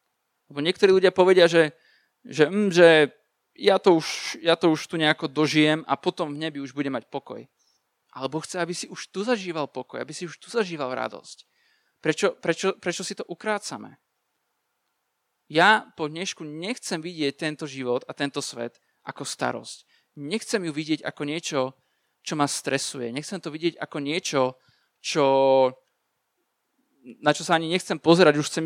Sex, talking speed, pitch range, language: male, 165 wpm, 145-175 Hz, Slovak